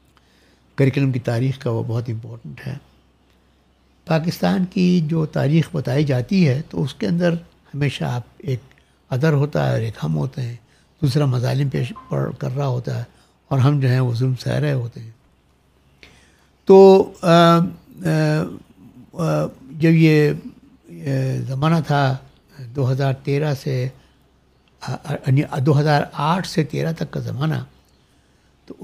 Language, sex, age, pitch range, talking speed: Urdu, male, 60-79, 120-155 Hz, 140 wpm